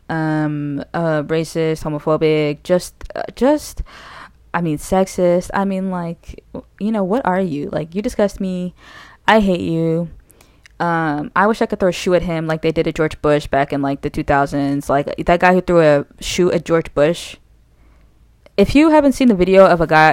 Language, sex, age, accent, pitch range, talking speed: English, female, 20-39, American, 150-195 Hz, 200 wpm